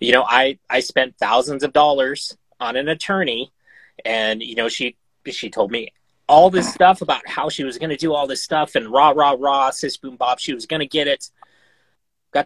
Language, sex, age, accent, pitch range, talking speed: English, male, 30-49, American, 120-180 Hz, 205 wpm